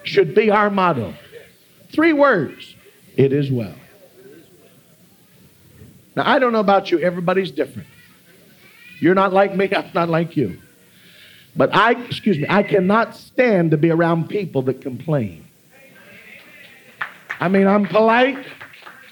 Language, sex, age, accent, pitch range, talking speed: English, male, 50-69, American, 190-270 Hz, 130 wpm